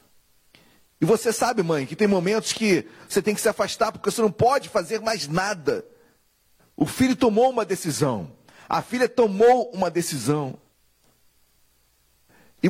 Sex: male